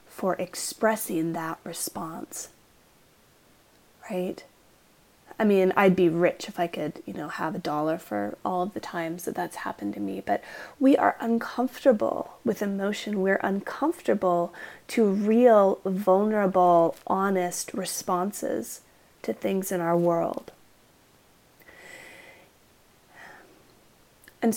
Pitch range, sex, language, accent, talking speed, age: 175-220 Hz, female, English, American, 115 wpm, 30-49